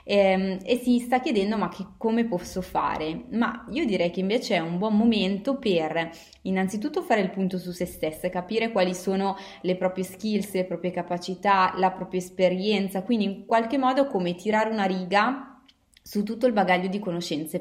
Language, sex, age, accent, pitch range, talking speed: Italian, female, 20-39, native, 180-215 Hz, 175 wpm